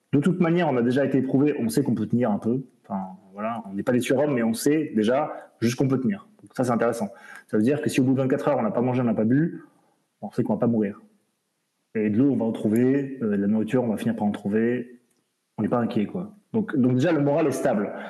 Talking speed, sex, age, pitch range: 280 wpm, male, 20-39, 110-165 Hz